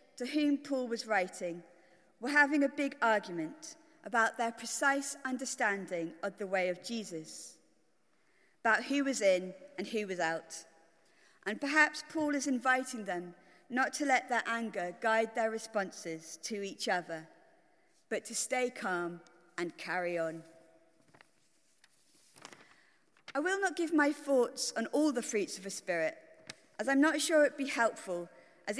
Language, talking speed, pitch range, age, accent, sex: English, 150 wpm, 180-275 Hz, 40-59, British, female